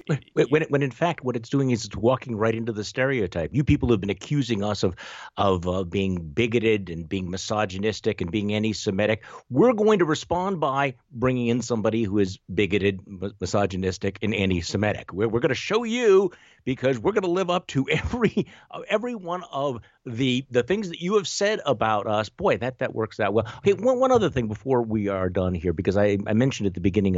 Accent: American